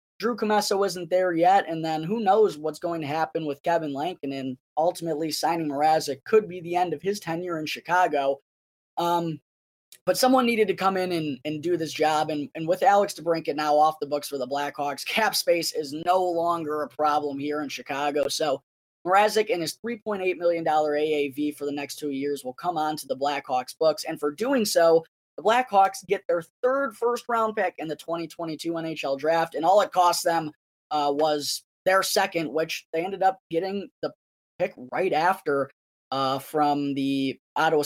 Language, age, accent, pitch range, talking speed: English, 20-39, American, 145-180 Hz, 190 wpm